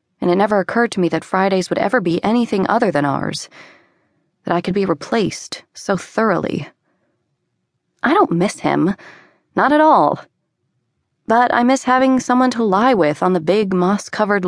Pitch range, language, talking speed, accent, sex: 170-205 Hz, English, 170 wpm, American, female